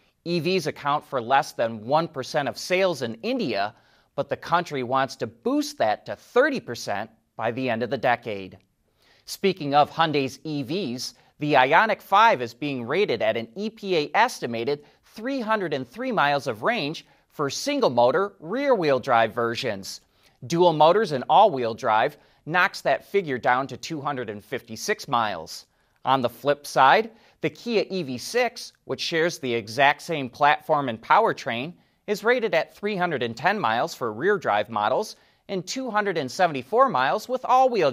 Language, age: English, 30-49